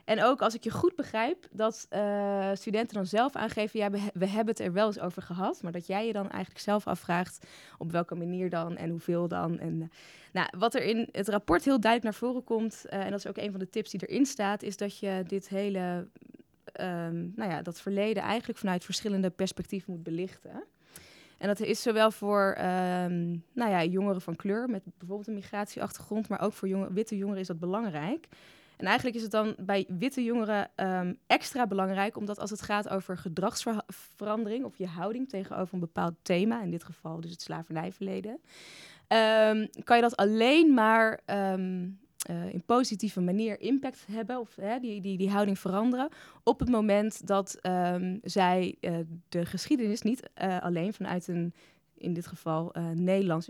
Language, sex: Dutch, female